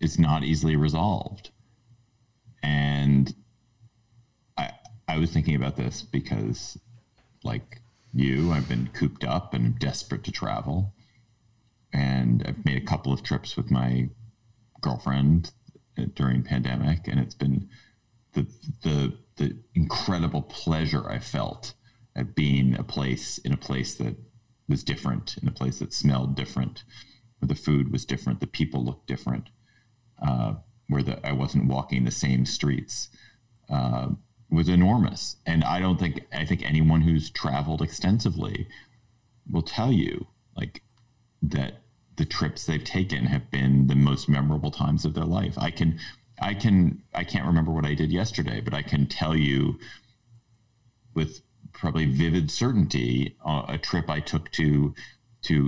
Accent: American